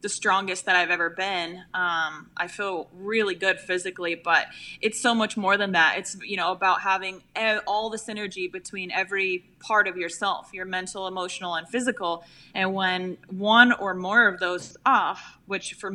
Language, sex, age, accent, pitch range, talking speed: English, female, 20-39, American, 185-210 Hz, 185 wpm